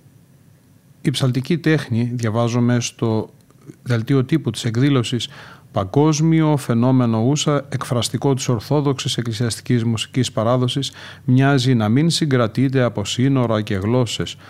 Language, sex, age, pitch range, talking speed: Greek, male, 40-59, 115-140 Hz, 110 wpm